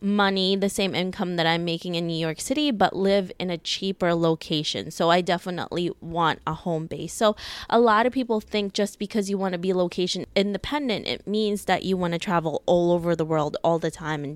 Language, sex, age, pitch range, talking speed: English, female, 20-39, 160-195 Hz, 220 wpm